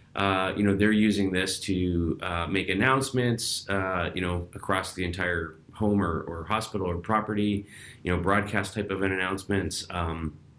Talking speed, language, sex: 165 wpm, English, male